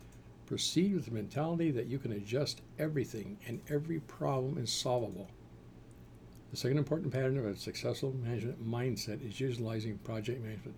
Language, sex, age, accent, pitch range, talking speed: English, male, 60-79, American, 100-135 Hz, 150 wpm